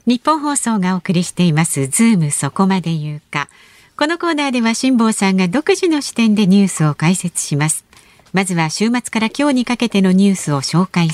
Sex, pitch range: female, 155-230 Hz